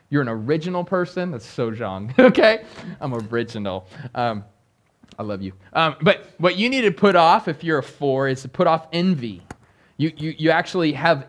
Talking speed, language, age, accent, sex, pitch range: 190 wpm, English, 20-39, American, male, 145-230 Hz